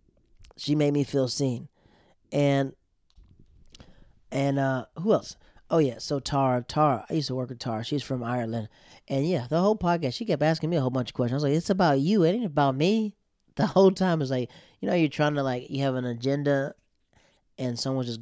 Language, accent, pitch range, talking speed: English, American, 120-145 Hz, 215 wpm